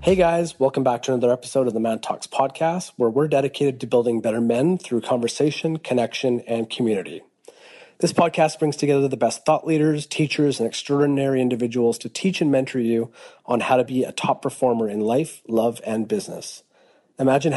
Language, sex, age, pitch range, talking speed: English, male, 30-49, 120-145 Hz, 185 wpm